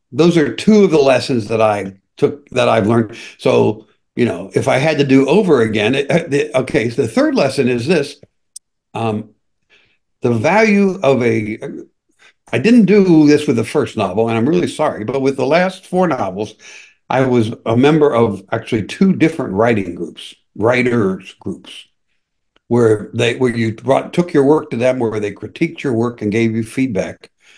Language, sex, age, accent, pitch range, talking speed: English, male, 60-79, American, 115-160 Hz, 175 wpm